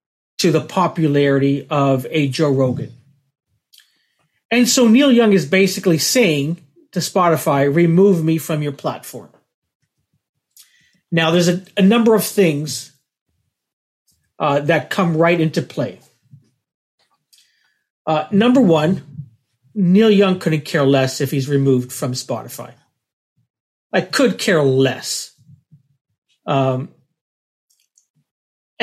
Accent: American